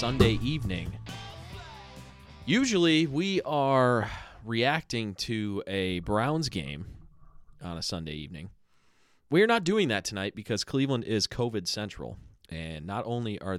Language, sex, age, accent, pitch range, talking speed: English, male, 30-49, American, 90-130 Hz, 130 wpm